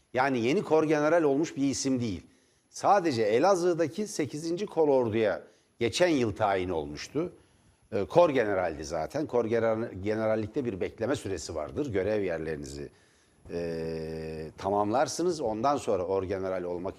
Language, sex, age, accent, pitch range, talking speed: Turkish, male, 60-79, native, 100-135 Hz, 105 wpm